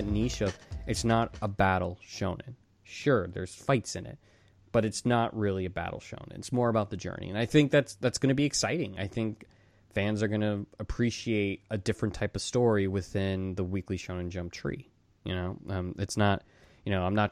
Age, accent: 20-39, American